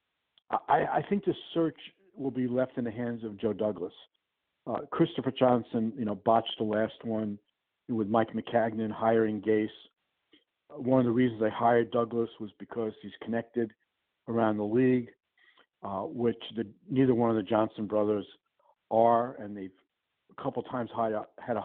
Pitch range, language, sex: 110-135 Hz, English, male